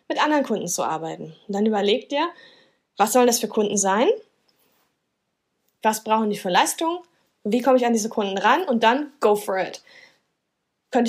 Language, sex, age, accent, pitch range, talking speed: German, female, 20-39, German, 205-265 Hz, 180 wpm